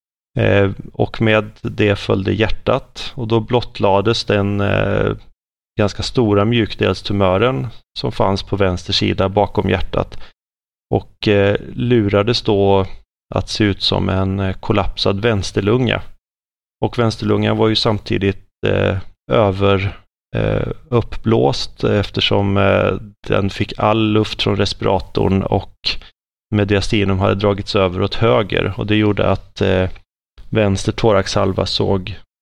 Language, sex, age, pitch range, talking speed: Swedish, male, 30-49, 95-110 Hz, 105 wpm